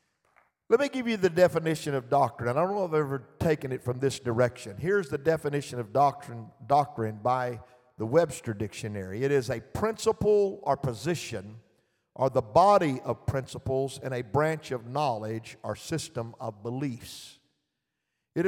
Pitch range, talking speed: 130-185 Hz, 160 wpm